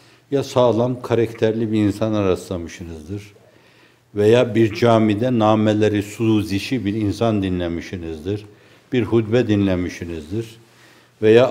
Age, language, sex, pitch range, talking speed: 60-79, Turkish, male, 100-120 Hz, 95 wpm